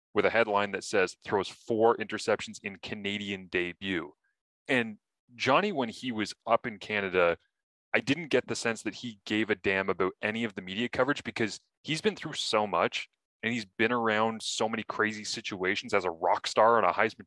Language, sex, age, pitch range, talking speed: English, male, 20-39, 100-120 Hz, 195 wpm